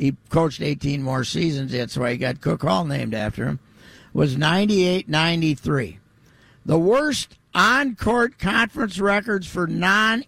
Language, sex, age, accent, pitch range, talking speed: English, male, 60-79, American, 140-195 Hz, 165 wpm